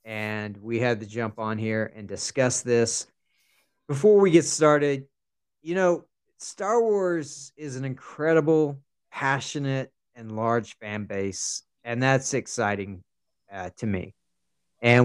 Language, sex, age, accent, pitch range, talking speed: English, male, 40-59, American, 115-145 Hz, 130 wpm